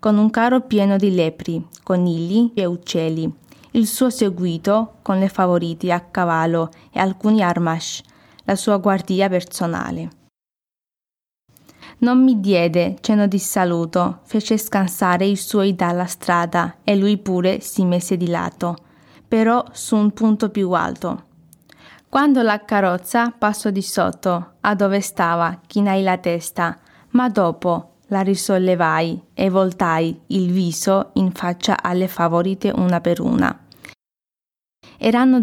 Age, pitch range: 20-39, 175-210 Hz